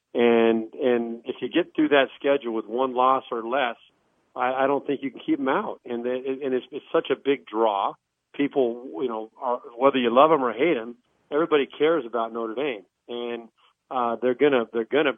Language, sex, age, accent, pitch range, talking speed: English, male, 40-59, American, 115-135 Hz, 210 wpm